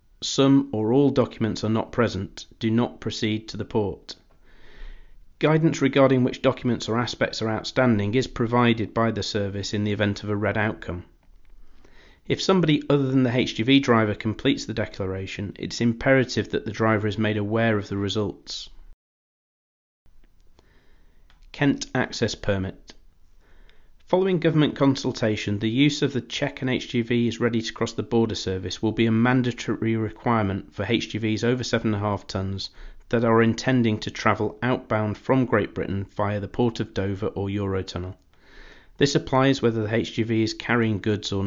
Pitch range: 100-120 Hz